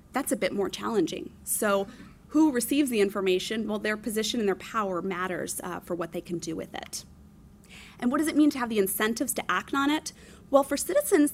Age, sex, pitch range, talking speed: 30-49, female, 195-265 Hz, 215 wpm